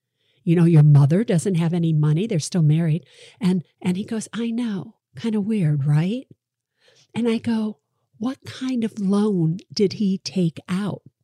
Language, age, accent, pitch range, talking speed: English, 50-69, American, 160-225 Hz, 170 wpm